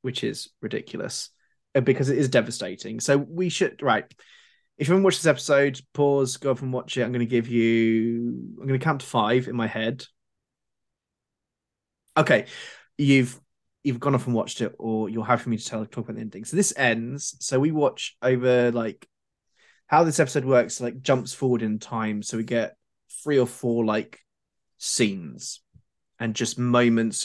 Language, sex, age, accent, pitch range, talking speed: English, male, 20-39, British, 115-130 Hz, 185 wpm